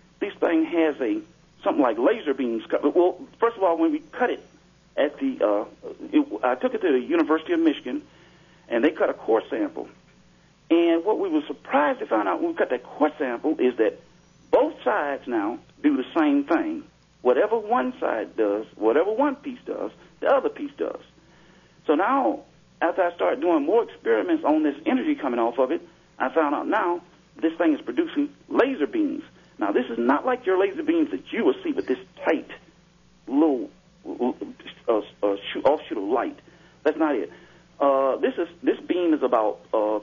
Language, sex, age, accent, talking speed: English, male, 50-69, American, 190 wpm